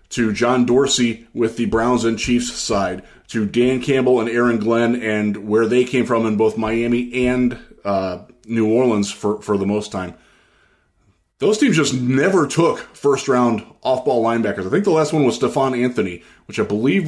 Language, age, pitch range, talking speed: English, 20-39, 110-140 Hz, 180 wpm